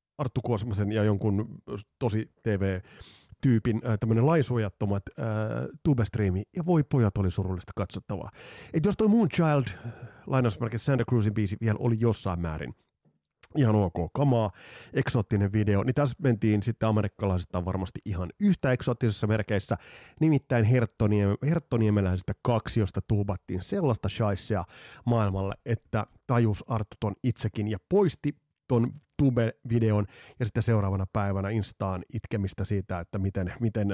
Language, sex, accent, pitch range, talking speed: Finnish, male, native, 95-120 Hz, 120 wpm